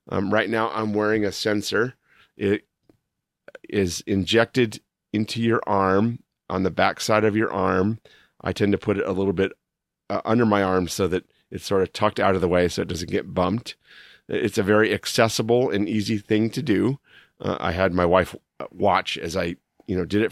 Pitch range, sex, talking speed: 95-115 Hz, male, 200 wpm